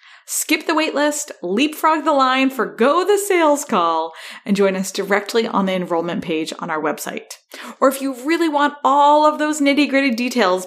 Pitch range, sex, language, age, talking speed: 185-260 Hz, female, English, 30-49, 175 wpm